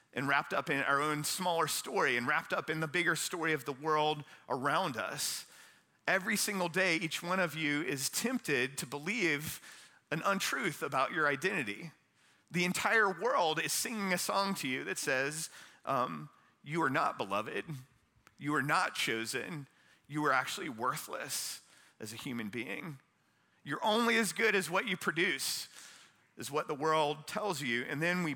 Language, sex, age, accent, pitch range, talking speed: English, male, 40-59, American, 140-180 Hz, 170 wpm